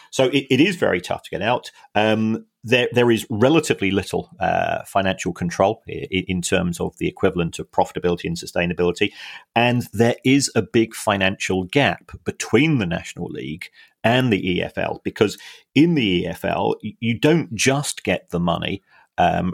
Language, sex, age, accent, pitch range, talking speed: English, male, 40-59, British, 90-110 Hz, 165 wpm